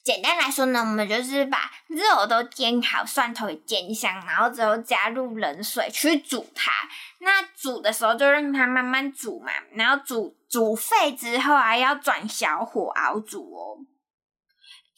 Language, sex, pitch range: Chinese, female, 220-285 Hz